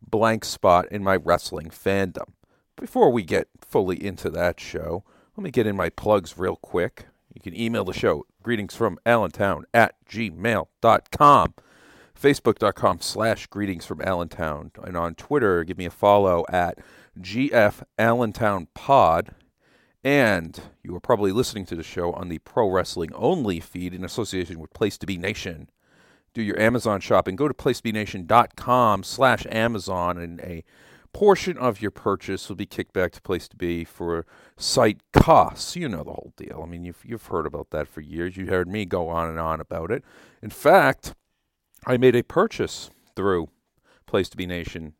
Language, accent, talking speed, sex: English, American, 170 wpm, male